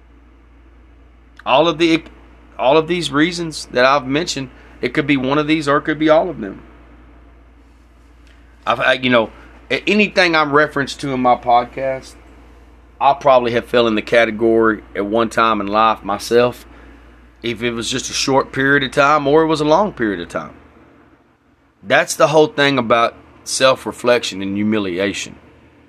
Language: English